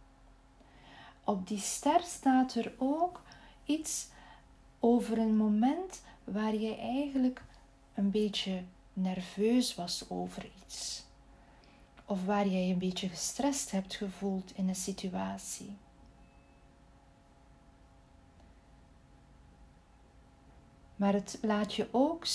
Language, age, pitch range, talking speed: Dutch, 40-59, 195-240 Hz, 95 wpm